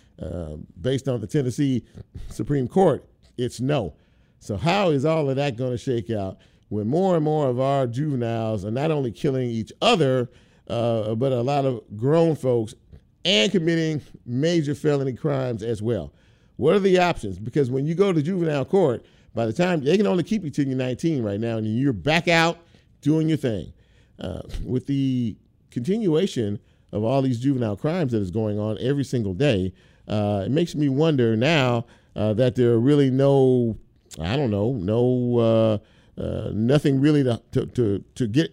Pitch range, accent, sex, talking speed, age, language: 110-145 Hz, American, male, 185 wpm, 50-69, English